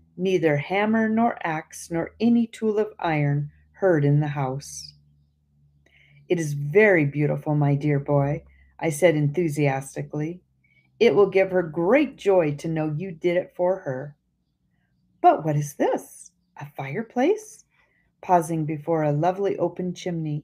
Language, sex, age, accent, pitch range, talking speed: English, female, 40-59, American, 145-190 Hz, 140 wpm